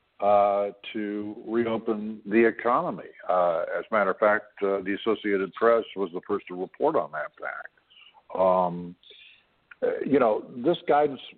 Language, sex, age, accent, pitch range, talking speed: English, male, 60-79, American, 95-115 Hz, 150 wpm